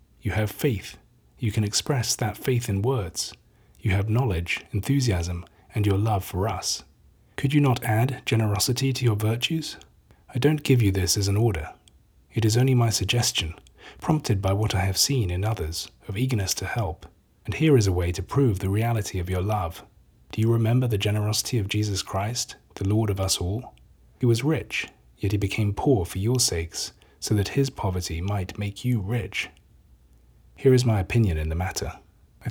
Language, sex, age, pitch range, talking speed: English, male, 30-49, 95-120 Hz, 190 wpm